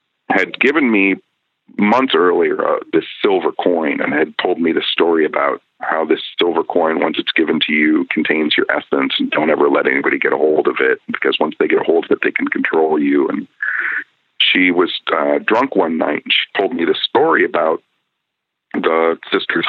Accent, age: American, 50-69